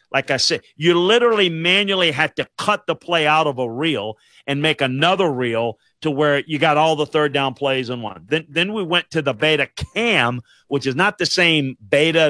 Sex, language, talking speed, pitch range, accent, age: male, English, 210 wpm, 130-170 Hz, American, 50-69